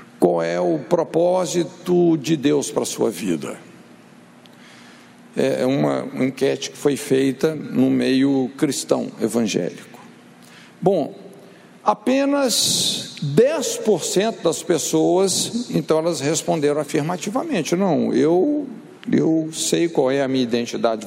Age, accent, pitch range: 60-79, Brazilian, 140-205 Hz